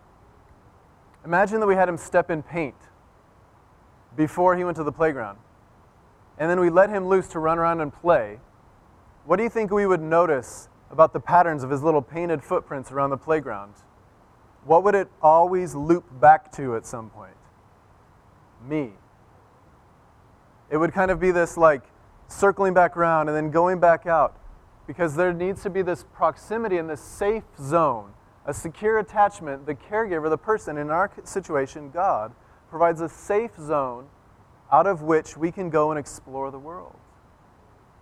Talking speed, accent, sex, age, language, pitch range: 165 wpm, American, male, 30-49, English, 130-180 Hz